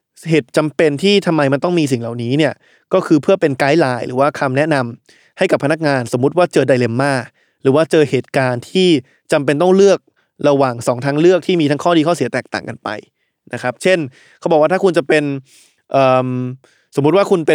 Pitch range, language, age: 135-175 Hz, Thai, 20-39